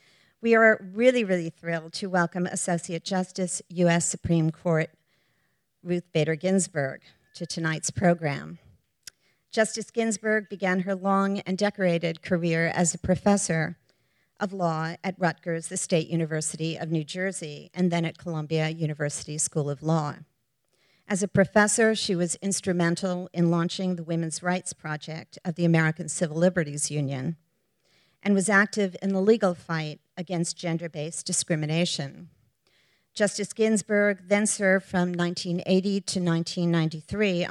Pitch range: 160-190 Hz